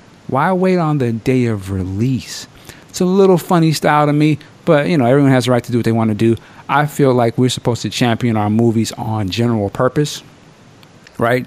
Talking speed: 215 wpm